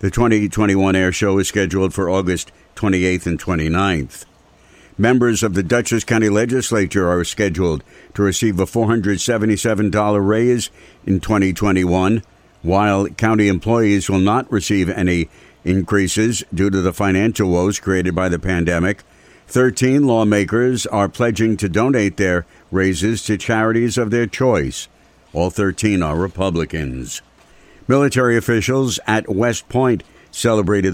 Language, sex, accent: English, male, American